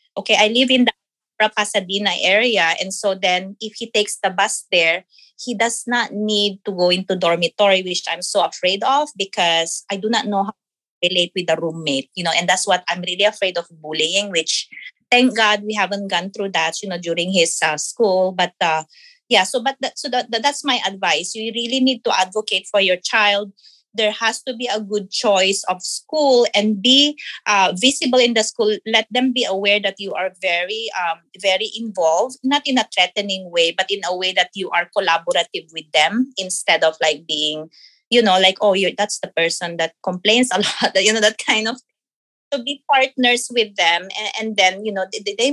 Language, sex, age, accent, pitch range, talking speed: English, female, 20-39, Filipino, 175-220 Hz, 210 wpm